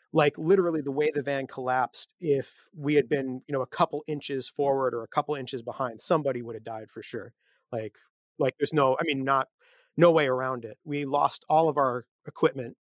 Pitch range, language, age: 120-145 Hz, English, 30-49